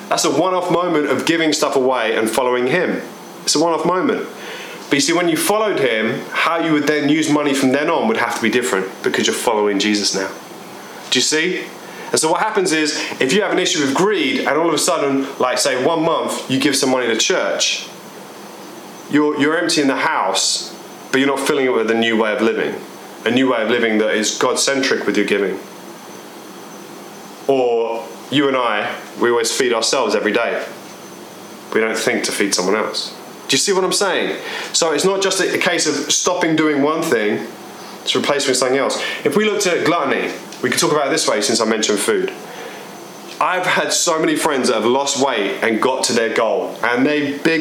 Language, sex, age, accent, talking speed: English, male, 30-49, British, 210 wpm